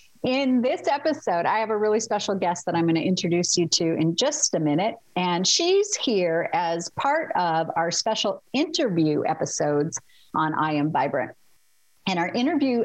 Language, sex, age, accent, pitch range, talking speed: English, female, 50-69, American, 165-215 Hz, 175 wpm